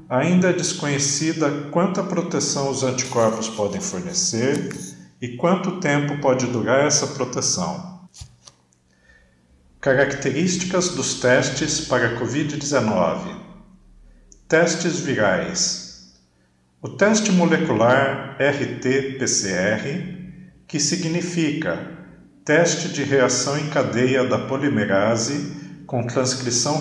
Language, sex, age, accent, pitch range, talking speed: Portuguese, male, 50-69, Brazilian, 125-155 Hz, 85 wpm